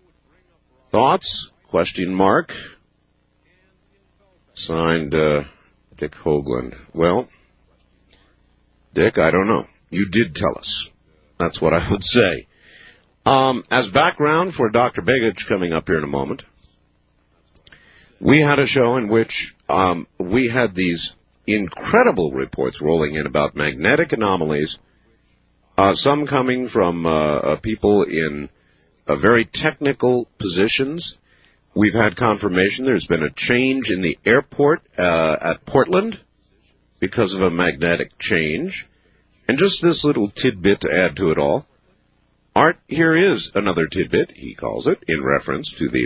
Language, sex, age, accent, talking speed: English, male, 50-69, American, 130 wpm